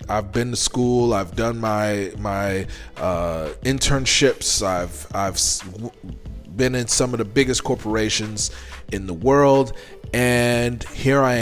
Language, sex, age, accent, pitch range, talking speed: English, male, 30-49, American, 95-125 Hz, 130 wpm